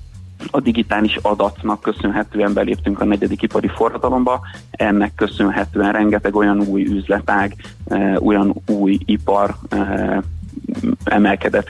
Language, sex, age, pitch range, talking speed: Hungarian, male, 30-49, 100-110 Hz, 95 wpm